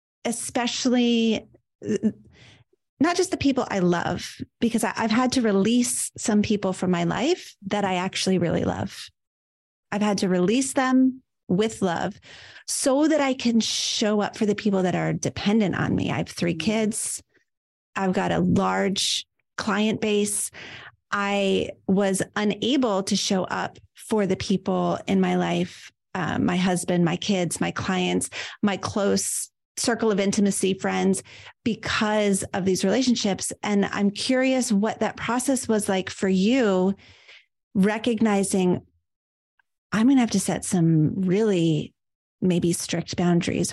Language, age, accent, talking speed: English, 30-49, American, 145 wpm